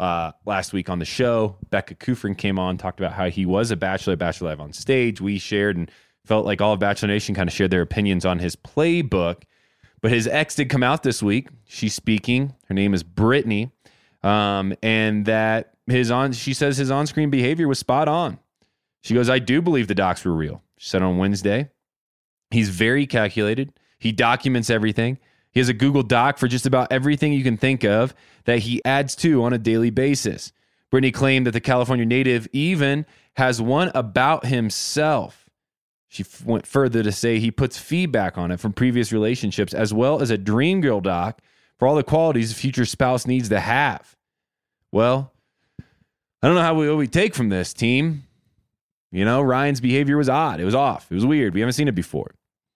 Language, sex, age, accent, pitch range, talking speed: English, male, 20-39, American, 105-135 Hz, 195 wpm